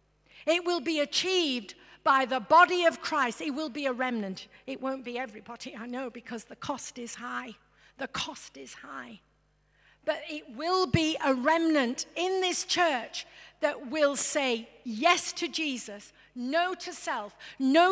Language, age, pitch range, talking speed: English, 50-69, 230-295 Hz, 160 wpm